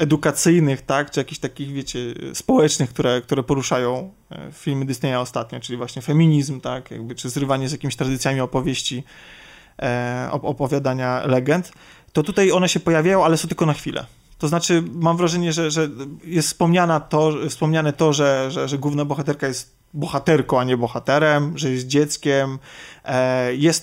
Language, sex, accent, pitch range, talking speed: Polish, male, native, 135-160 Hz, 155 wpm